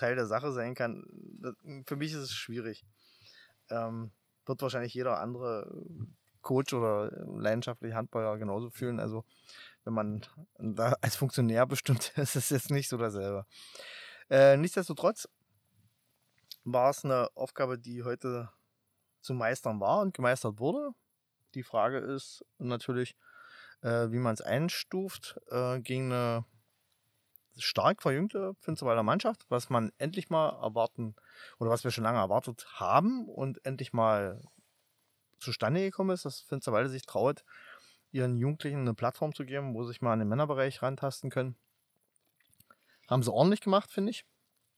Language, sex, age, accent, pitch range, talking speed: German, male, 20-39, German, 115-140 Hz, 145 wpm